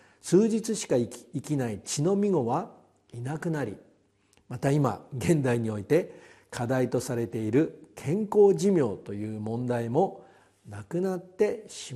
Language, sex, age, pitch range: Japanese, male, 50-69, 120-180 Hz